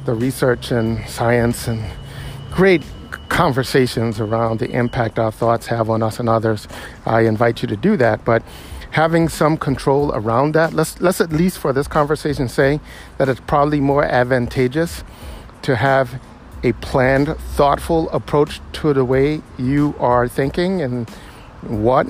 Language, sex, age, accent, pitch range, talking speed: English, male, 50-69, American, 120-150 Hz, 150 wpm